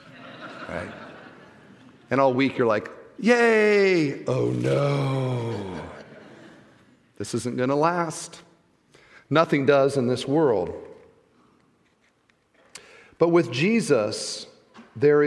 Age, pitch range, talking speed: 40-59, 110-140 Hz, 95 wpm